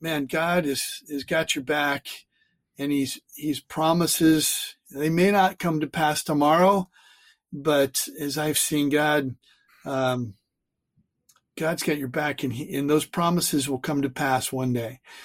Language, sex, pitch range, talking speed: English, male, 135-155 Hz, 155 wpm